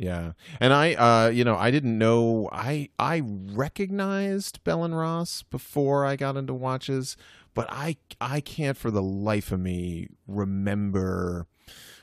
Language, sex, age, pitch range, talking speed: English, male, 30-49, 90-115 Hz, 150 wpm